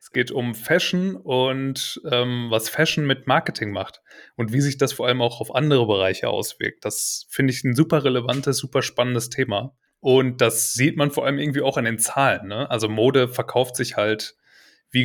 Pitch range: 115-150 Hz